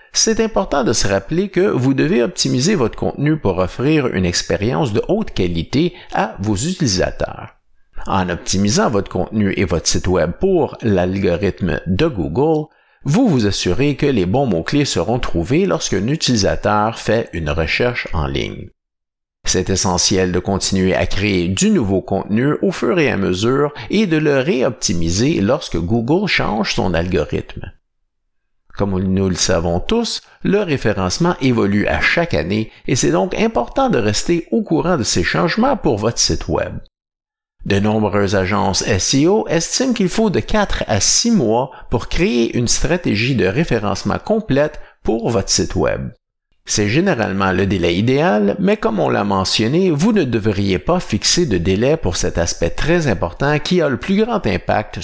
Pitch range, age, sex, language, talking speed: 95-150 Hz, 50-69, male, French, 160 wpm